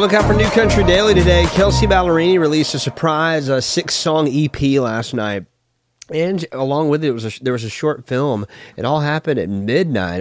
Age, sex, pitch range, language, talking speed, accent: 30-49, male, 100-140 Hz, English, 195 wpm, American